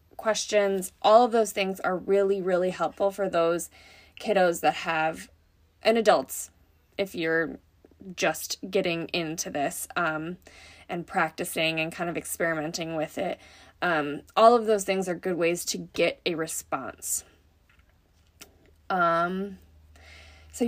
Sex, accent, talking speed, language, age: female, American, 130 wpm, English, 20-39